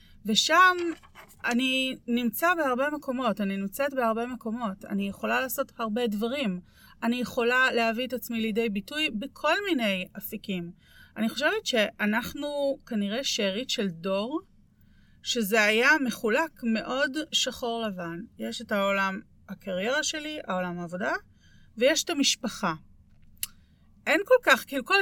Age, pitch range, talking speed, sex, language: 30-49, 205-280 Hz, 120 wpm, female, Hebrew